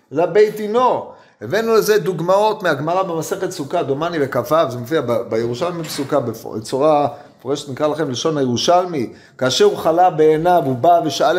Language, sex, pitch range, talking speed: Hebrew, male, 155-215 Hz, 155 wpm